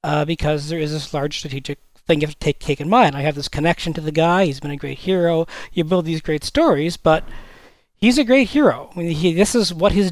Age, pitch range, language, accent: 40-59, 145-190 Hz, English, American